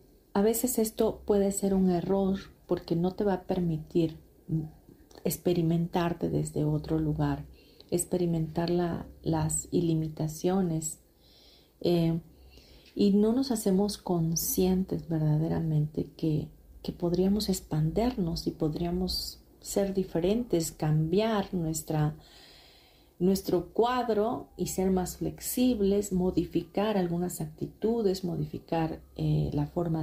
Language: Spanish